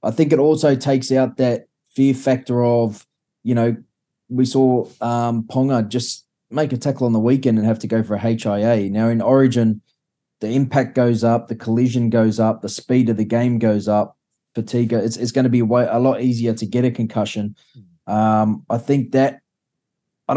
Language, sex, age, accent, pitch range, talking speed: English, male, 20-39, Australian, 110-130 Hz, 195 wpm